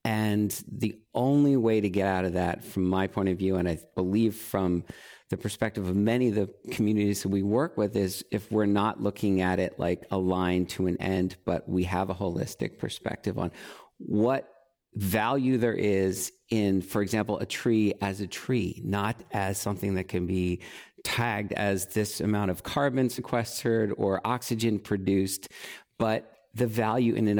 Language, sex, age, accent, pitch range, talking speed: English, male, 50-69, American, 100-130 Hz, 180 wpm